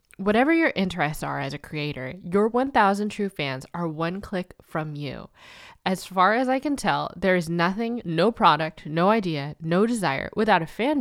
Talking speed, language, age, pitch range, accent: 185 wpm, English, 10-29, 160-220 Hz, American